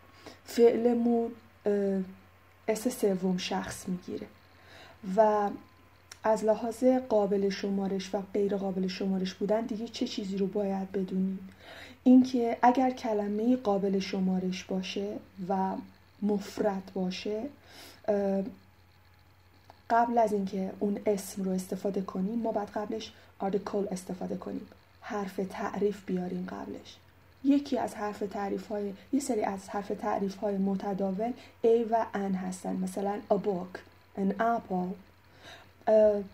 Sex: female